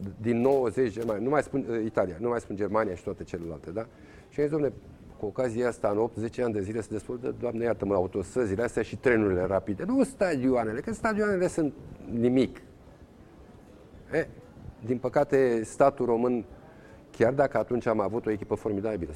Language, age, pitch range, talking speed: Romanian, 40-59, 105-130 Hz, 170 wpm